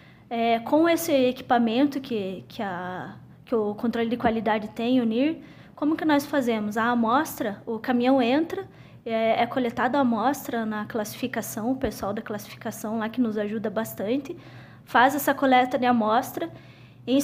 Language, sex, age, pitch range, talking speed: Portuguese, female, 20-39, 230-280 Hz, 160 wpm